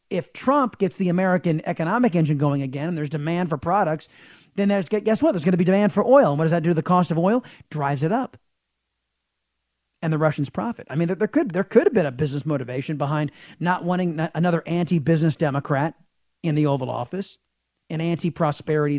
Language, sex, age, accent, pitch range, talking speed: English, male, 40-59, American, 150-200 Hz, 205 wpm